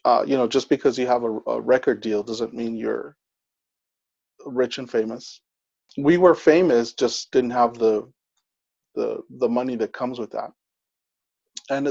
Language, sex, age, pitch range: English, male, 30-49, 115-150 Hz